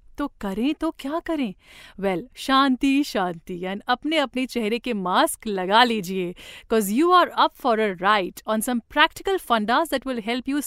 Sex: female